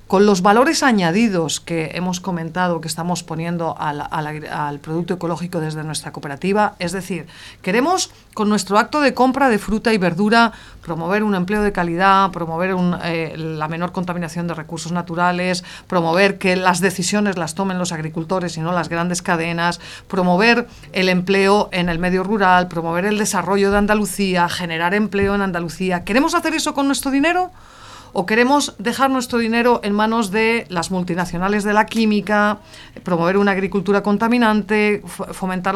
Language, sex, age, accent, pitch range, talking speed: Spanish, female, 40-59, Spanish, 180-210 Hz, 160 wpm